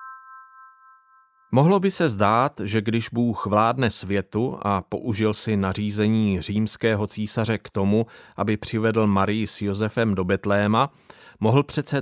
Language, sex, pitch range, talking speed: Czech, male, 105-120 Hz, 130 wpm